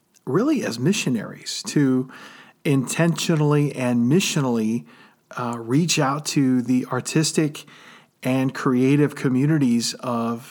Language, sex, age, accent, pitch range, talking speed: English, male, 40-59, American, 125-155 Hz, 95 wpm